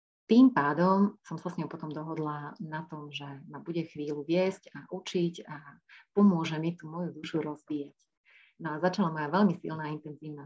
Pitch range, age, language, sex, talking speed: 150-180 Hz, 30-49, Slovak, female, 180 wpm